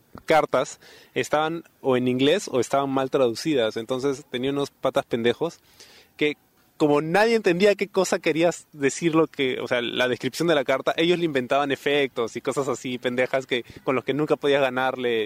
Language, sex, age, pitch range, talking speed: Spanish, male, 20-39, 130-175 Hz, 180 wpm